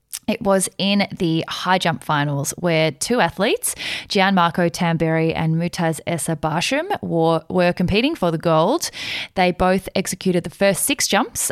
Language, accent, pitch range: English, Australian, 165-200 Hz